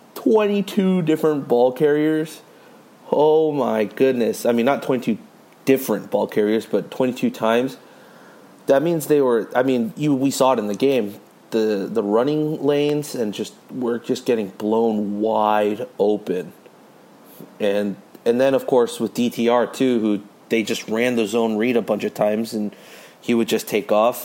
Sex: male